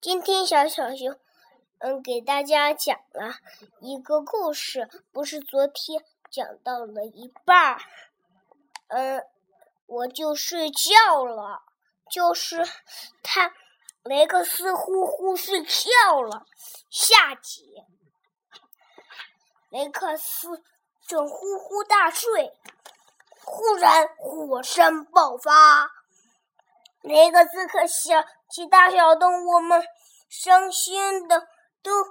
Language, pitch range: Chinese, 290-365 Hz